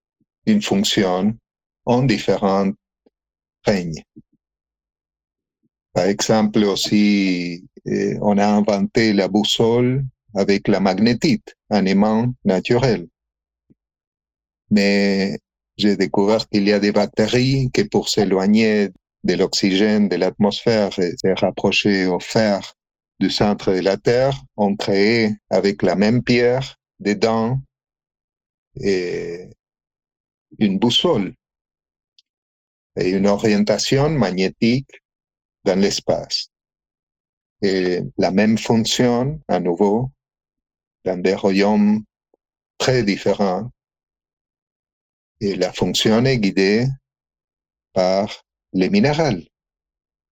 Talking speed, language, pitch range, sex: 95 wpm, French, 95-115 Hz, male